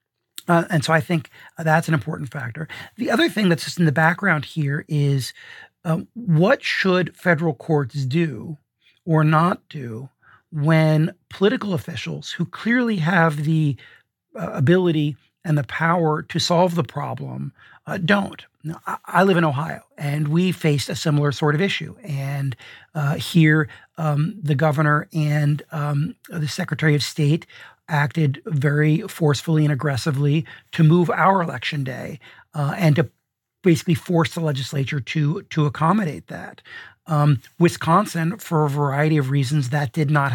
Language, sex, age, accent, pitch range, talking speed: English, male, 40-59, American, 140-165 Hz, 155 wpm